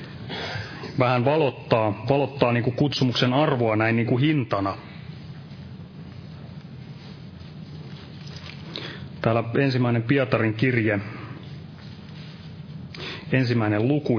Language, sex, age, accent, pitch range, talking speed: Finnish, male, 30-49, native, 115-155 Hz, 70 wpm